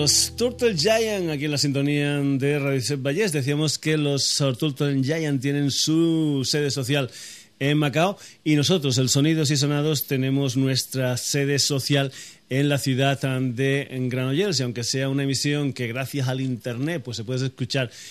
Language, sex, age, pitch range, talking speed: Spanish, male, 30-49, 130-155 Hz, 160 wpm